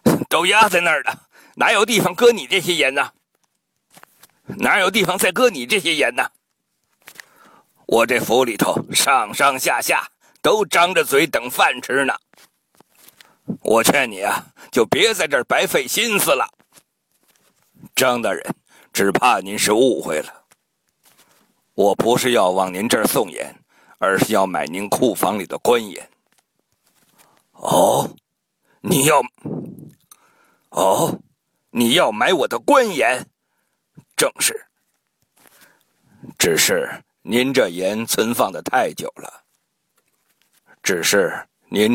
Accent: native